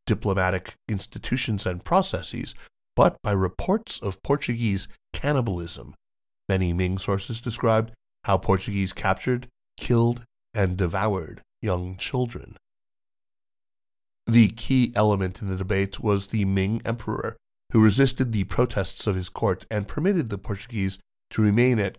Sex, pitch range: male, 95-110 Hz